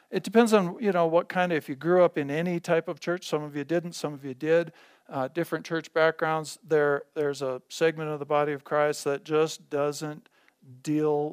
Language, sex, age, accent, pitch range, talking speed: English, male, 50-69, American, 140-160 Hz, 220 wpm